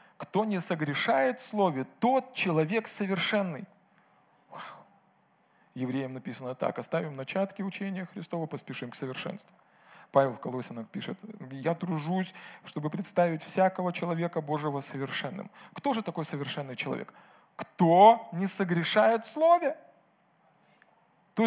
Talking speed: 110 wpm